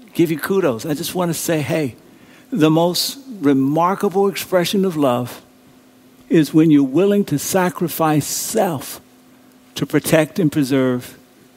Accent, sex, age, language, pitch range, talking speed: American, male, 60-79, English, 135-175 Hz, 135 wpm